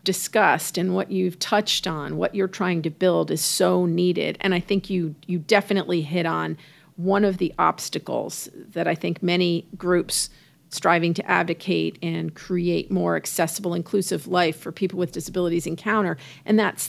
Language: English